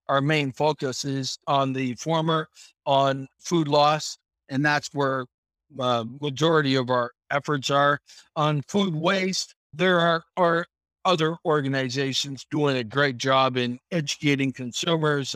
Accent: American